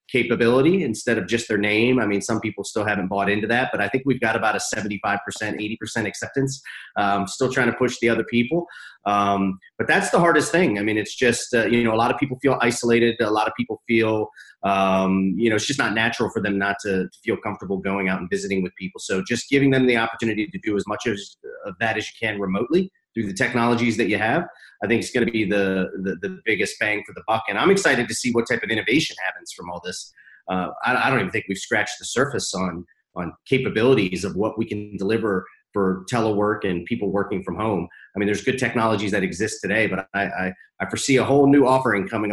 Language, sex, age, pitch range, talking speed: English, male, 30-49, 100-125 Hz, 240 wpm